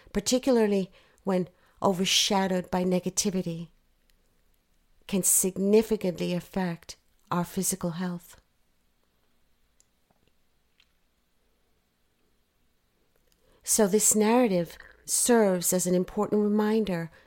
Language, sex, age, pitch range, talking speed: English, female, 50-69, 165-205 Hz, 65 wpm